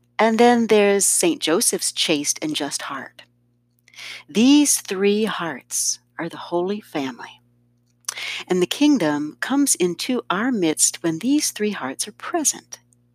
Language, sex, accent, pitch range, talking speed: English, female, American, 120-195 Hz, 130 wpm